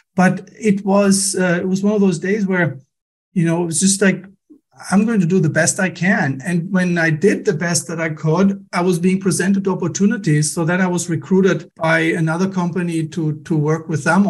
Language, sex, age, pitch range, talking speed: English, male, 50-69, 155-185 Hz, 225 wpm